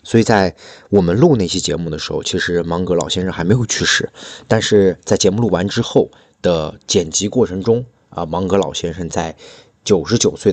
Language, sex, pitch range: Chinese, male, 90-115 Hz